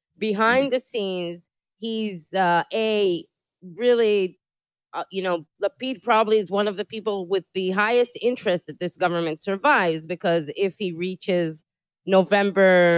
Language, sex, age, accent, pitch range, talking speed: English, female, 30-49, American, 175-225 Hz, 140 wpm